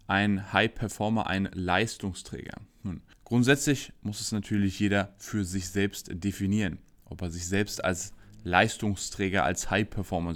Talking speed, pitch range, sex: 120 wpm, 95-120 Hz, male